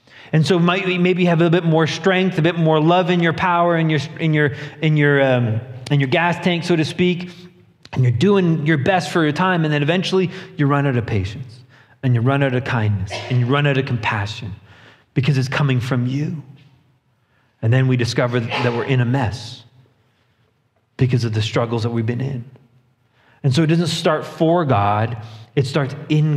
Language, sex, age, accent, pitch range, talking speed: English, male, 30-49, American, 125-170 Hz, 205 wpm